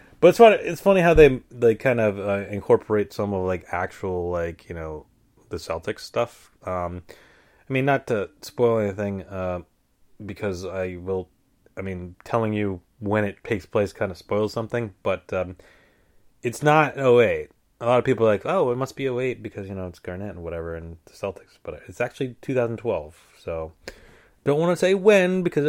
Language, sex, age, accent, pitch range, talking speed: English, male, 30-49, American, 90-125 Hz, 195 wpm